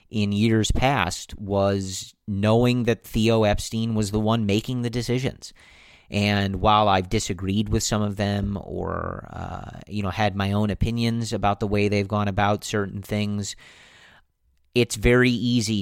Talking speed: 155 wpm